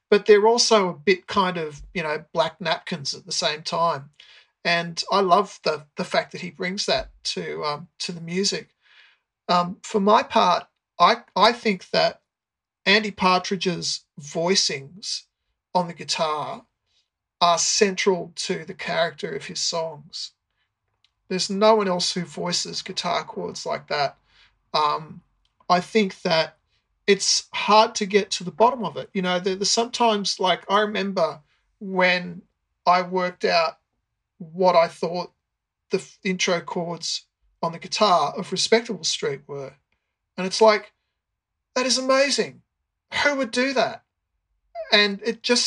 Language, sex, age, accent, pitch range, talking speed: English, male, 40-59, Australian, 175-215 Hz, 145 wpm